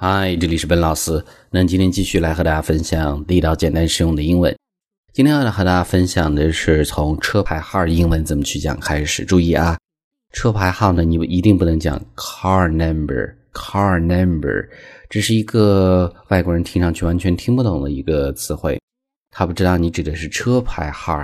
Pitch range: 80-100 Hz